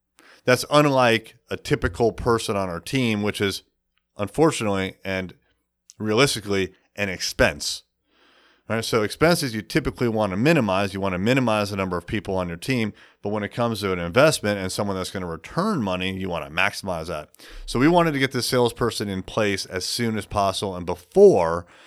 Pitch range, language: 95-120 Hz, English